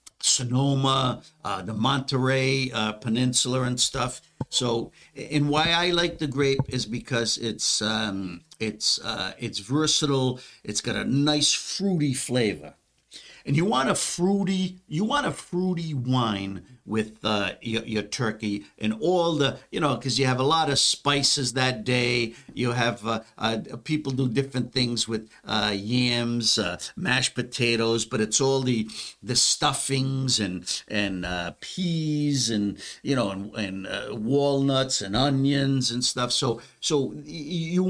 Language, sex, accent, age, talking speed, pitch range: English, male, American, 50-69, 150 wpm, 115-150 Hz